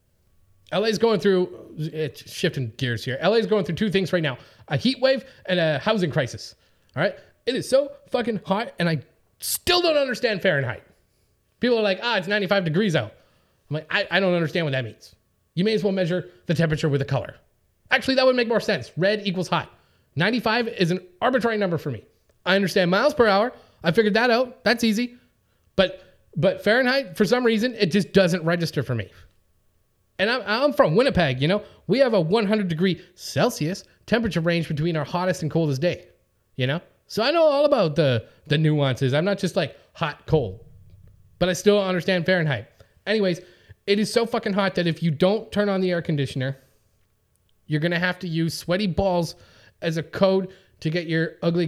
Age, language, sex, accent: 30-49, English, male, American